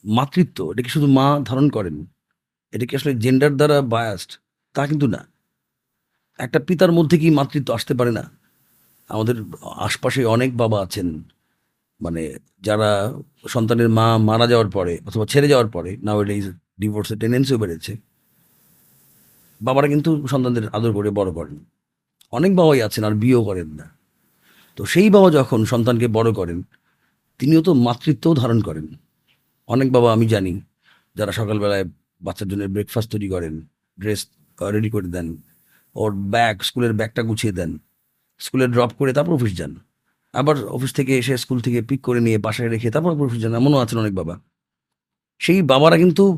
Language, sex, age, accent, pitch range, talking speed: Bengali, male, 40-59, native, 105-145 Hz, 150 wpm